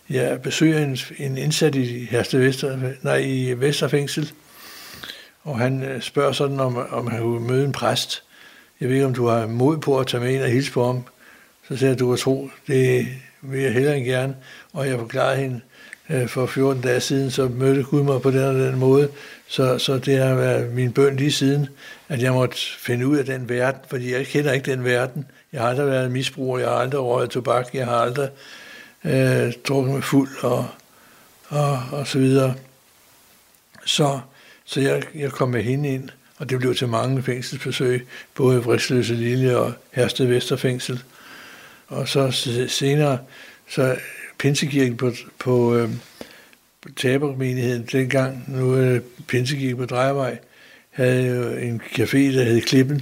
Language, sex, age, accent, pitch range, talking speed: Danish, male, 60-79, native, 125-140 Hz, 175 wpm